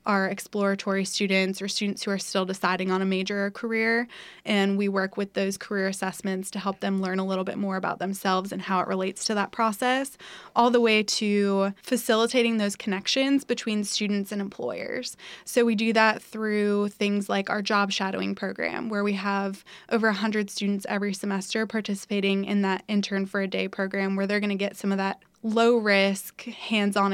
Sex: female